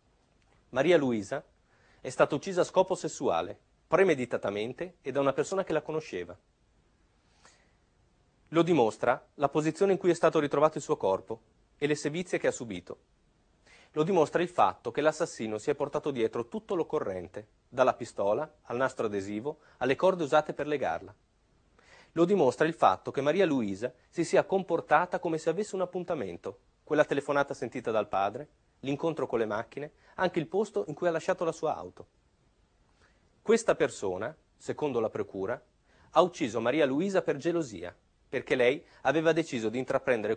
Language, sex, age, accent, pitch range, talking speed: Italian, male, 30-49, native, 125-170 Hz, 160 wpm